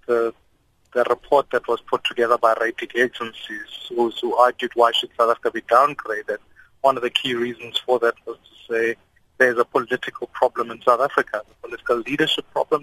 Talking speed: 180 wpm